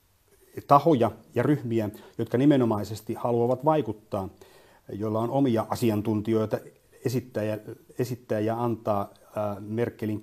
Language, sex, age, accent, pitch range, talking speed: Finnish, male, 30-49, native, 105-125 Hz, 100 wpm